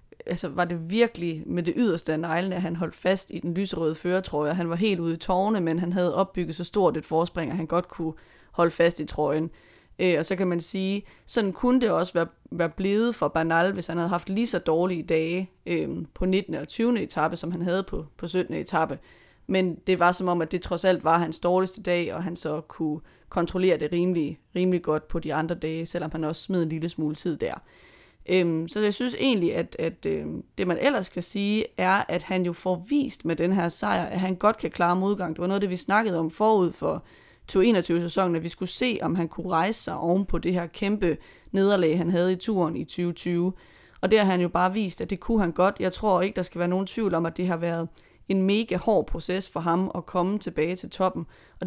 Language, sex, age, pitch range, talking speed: Danish, female, 30-49, 165-190 Hz, 240 wpm